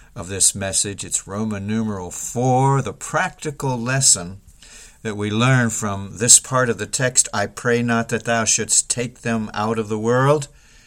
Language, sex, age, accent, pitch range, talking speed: English, male, 50-69, American, 110-140 Hz, 170 wpm